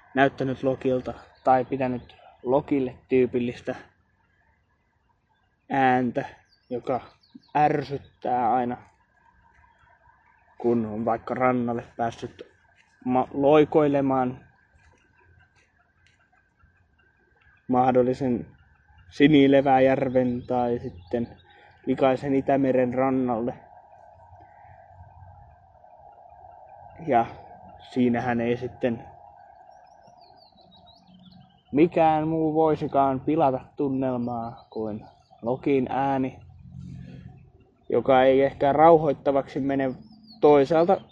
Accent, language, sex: native, Finnish, male